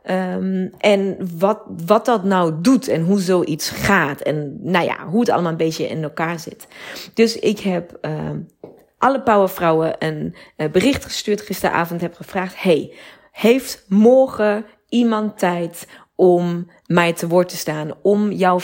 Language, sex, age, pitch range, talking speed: Dutch, female, 30-49, 170-210 Hz, 155 wpm